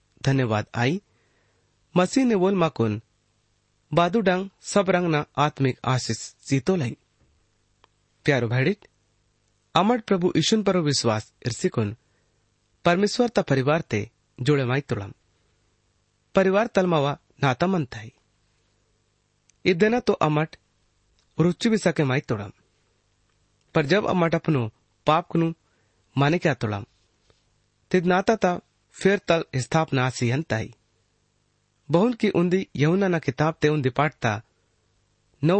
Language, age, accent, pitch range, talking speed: Hindi, 30-49, native, 110-175 Hz, 70 wpm